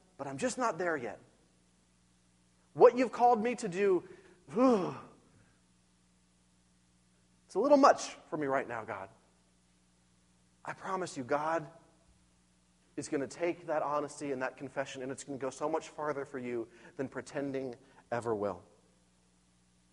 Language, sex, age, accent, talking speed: English, male, 30-49, American, 145 wpm